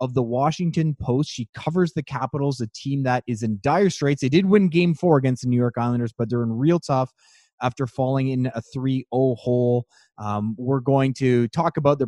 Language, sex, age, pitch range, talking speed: English, male, 20-39, 120-150 Hz, 215 wpm